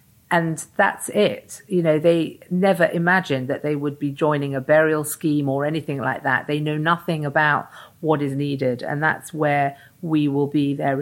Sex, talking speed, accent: female, 185 wpm, British